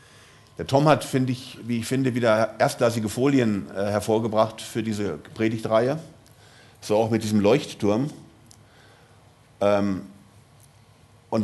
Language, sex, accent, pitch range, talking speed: German, male, German, 110-130 Hz, 120 wpm